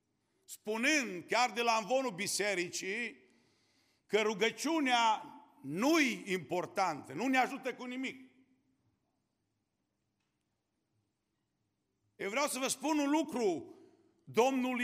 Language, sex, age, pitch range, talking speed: Romanian, male, 50-69, 190-260 Hz, 95 wpm